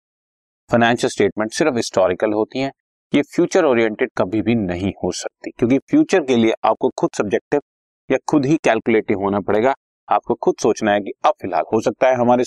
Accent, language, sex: native, Hindi, male